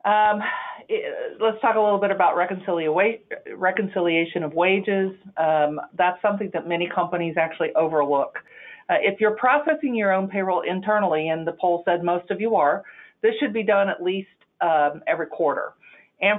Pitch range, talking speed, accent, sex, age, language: 155-205 Hz, 160 wpm, American, female, 40-59, English